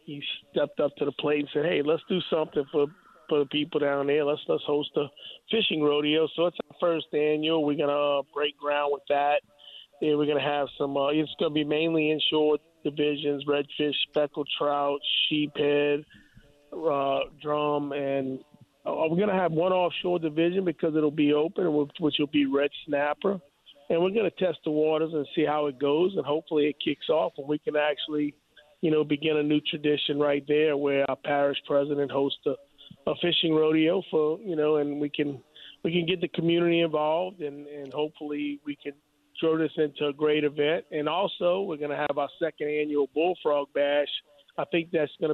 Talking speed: 205 wpm